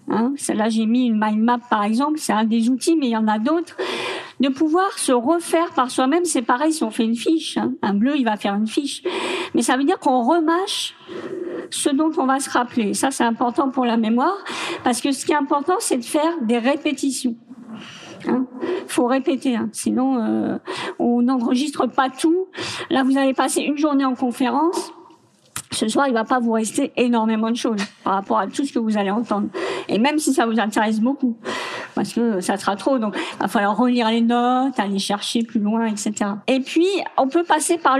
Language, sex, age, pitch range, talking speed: French, female, 50-69, 235-300 Hz, 220 wpm